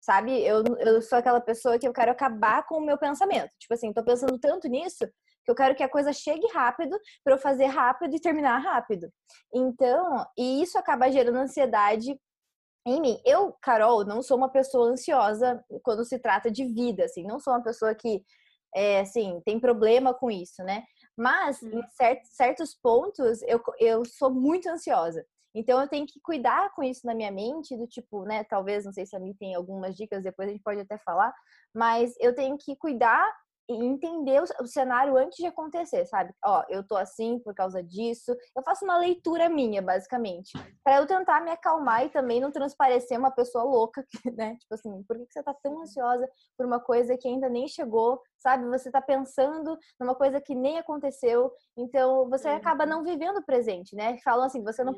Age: 20-39